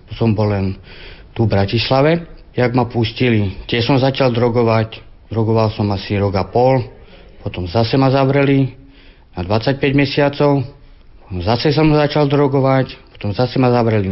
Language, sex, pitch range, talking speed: Slovak, male, 105-125 Hz, 140 wpm